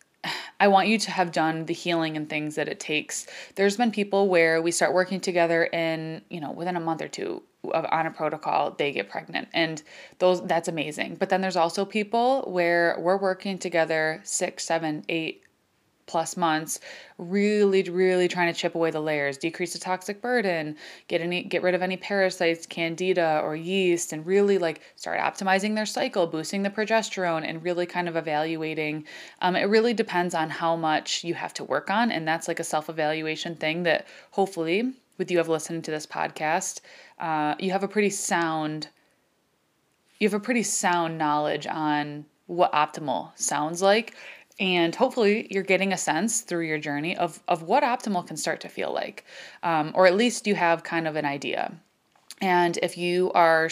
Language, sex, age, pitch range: English, female, 20-39, 160-190 Hz